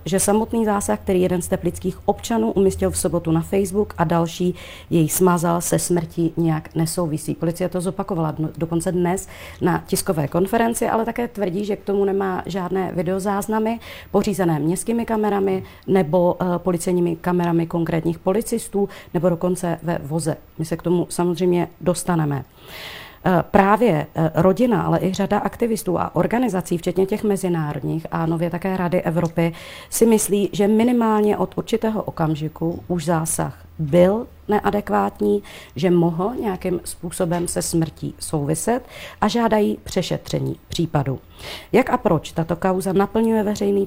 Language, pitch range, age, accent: Czech, 165-200 Hz, 40-59, native